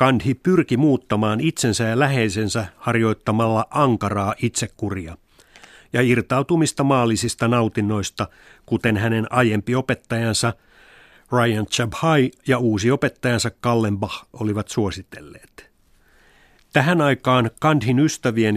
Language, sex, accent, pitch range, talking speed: Finnish, male, native, 110-140 Hz, 95 wpm